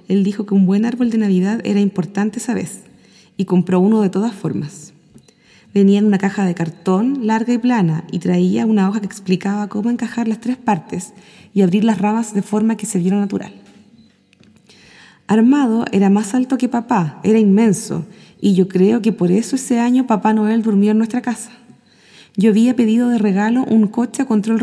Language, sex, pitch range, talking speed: Spanish, female, 190-230 Hz, 190 wpm